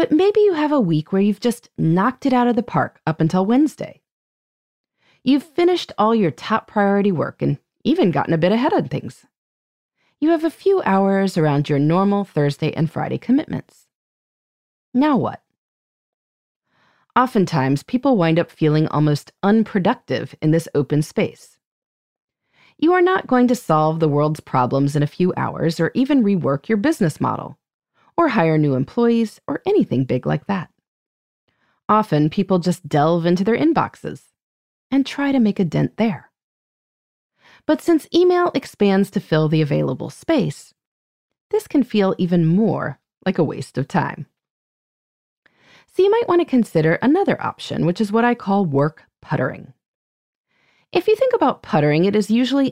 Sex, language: female, English